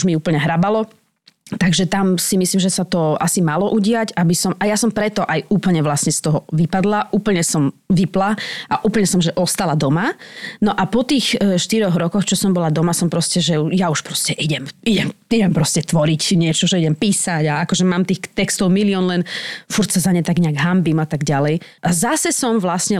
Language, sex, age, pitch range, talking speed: Slovak, female, 20-39, 170-210 Hz, 210 wpm